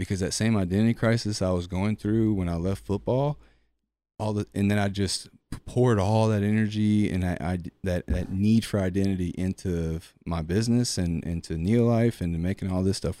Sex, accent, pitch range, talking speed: male, American, 85-100 Hz, 200 wpm